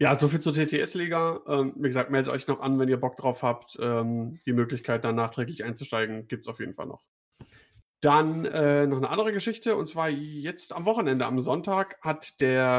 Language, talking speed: German, 190 wpm